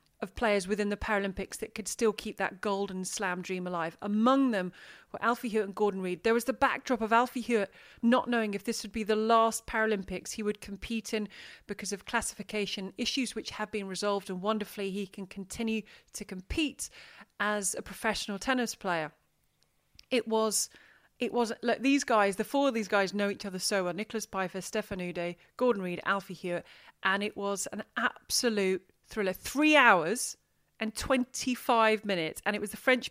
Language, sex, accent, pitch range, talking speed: English, female, British, 195-235 Hz, 185 wpm